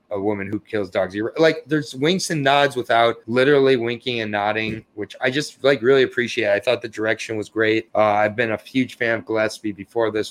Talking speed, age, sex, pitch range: 215 wpm, 30-49, male, 110-140 Hz